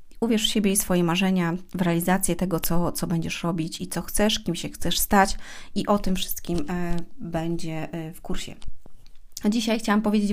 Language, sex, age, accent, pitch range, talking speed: Polish, female, 30-49, native, 185-215 Hz, 185 wpm